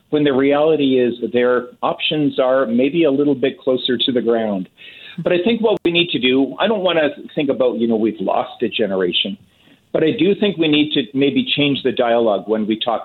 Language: English